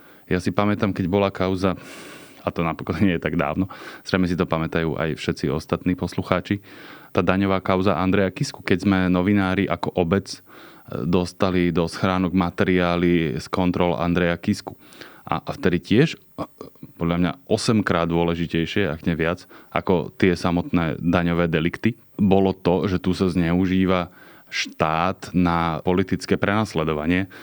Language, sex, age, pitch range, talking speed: Slovak, male, 20-39, 85-95 Hz, 145 wpm